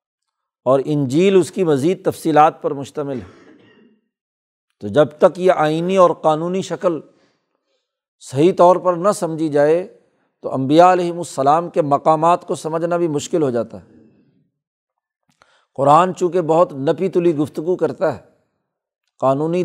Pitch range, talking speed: 150-180 Hz, 135 wpm